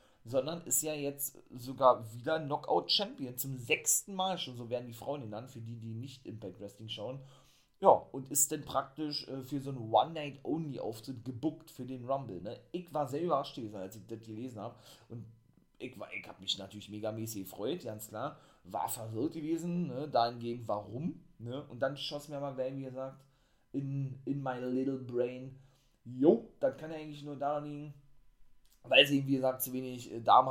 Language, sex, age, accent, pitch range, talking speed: German, male, 30-49, German, 115-145 Hz, 195 wpm